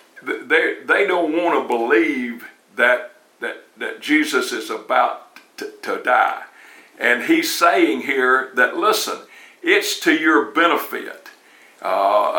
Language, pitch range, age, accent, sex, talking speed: English, 320-415 Hz, 60-79, American, male, 125 wpm